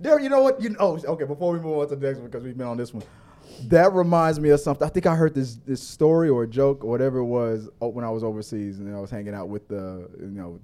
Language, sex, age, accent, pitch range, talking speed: English, male, 20-39, American, 115-170 Hz, 320 wpm